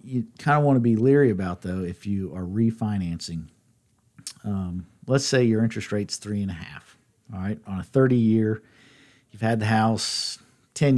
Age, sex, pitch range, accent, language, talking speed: 50-69, male, 105-125 Hz, American, English, 180 wpm